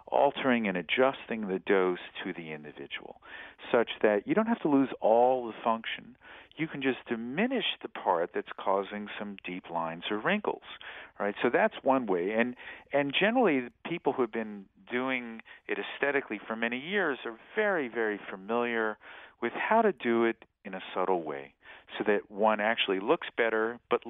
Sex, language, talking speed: male, English, 170 wpm